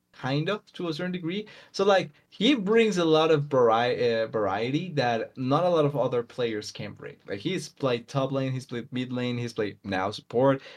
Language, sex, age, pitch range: English, male, 20-39, 115-150 Hz